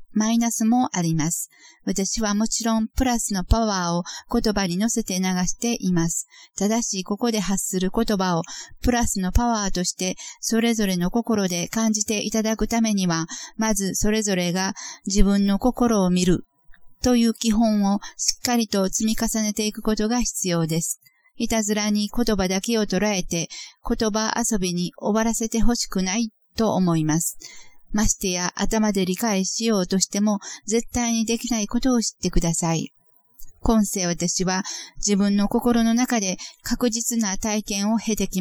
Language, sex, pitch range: Japanese, female, 190-230 Hz